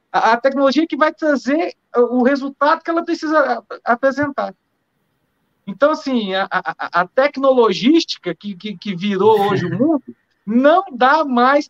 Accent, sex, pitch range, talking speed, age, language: Brazilian, male, 245-310 Hz, 140 wpm, 40-59, Portuguese